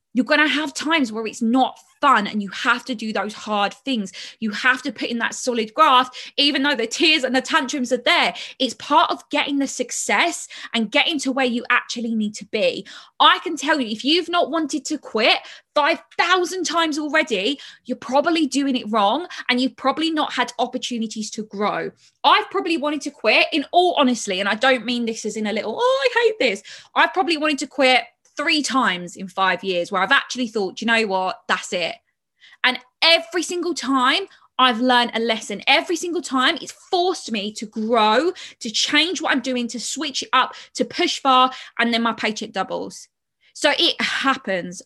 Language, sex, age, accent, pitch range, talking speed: English, female, 20-39, British, 225-310 Hz, 200 wpm